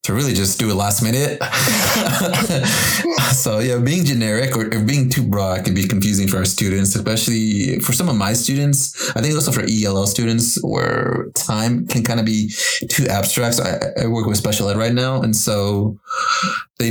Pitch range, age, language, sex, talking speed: 100-120 Hz, 20-39, English, male, 185 wpm